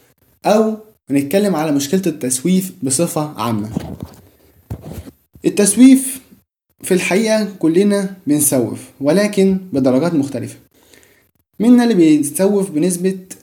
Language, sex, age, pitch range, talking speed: Arabic, male, 20-39, 135-190 Hz, 85 wpm